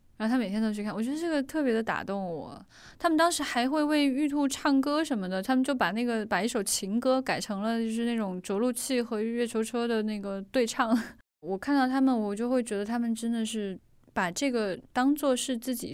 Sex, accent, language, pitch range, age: female, native, Chinese, 200-255 Hz, 10-29